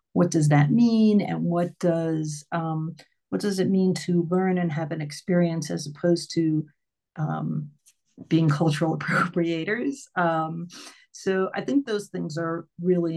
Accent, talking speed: American, 150 wpm